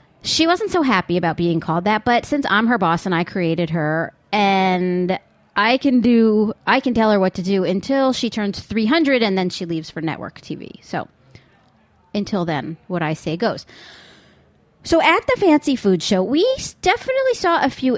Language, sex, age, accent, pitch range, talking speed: English, female, 30-49, American, 180-260 Hz, 190 wpm